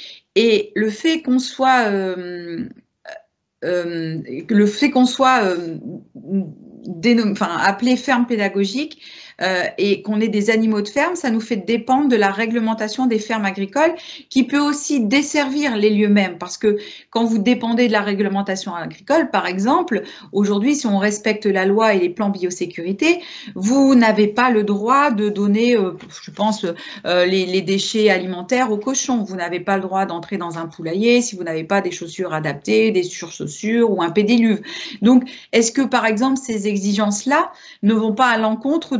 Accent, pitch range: French, 195-250 Hz